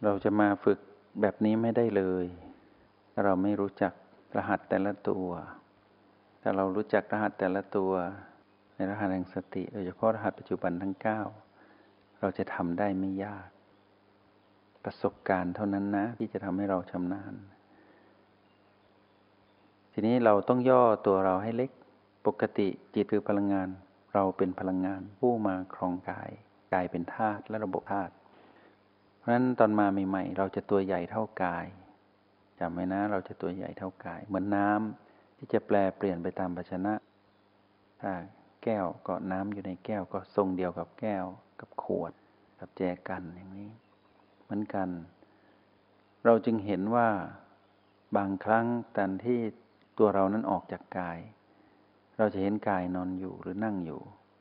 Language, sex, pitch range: Thai, male, 95-105 Hz